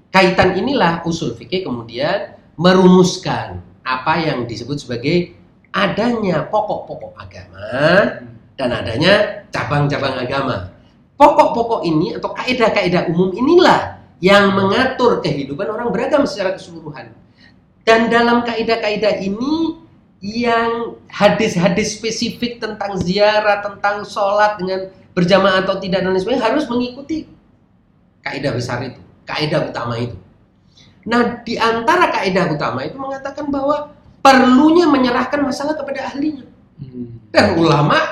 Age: 30-49